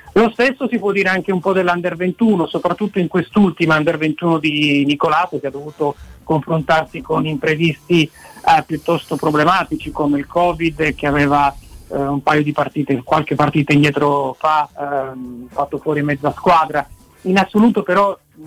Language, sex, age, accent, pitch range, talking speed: Italian, male, 40-59, native, 145-170 Hz, 160 wpm